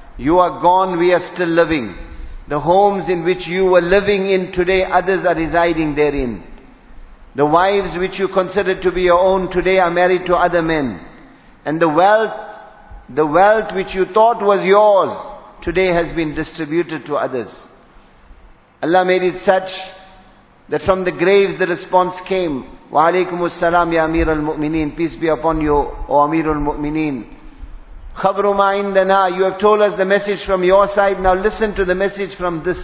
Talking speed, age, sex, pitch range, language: 165 wpm, 50-69, male, 160-190 Hz, English